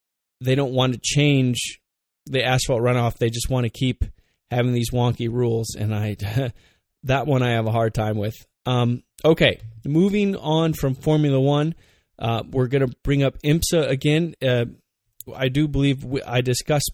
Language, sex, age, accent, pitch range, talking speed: English, male, 20-39, American, 115-140 Hz, 175 wpm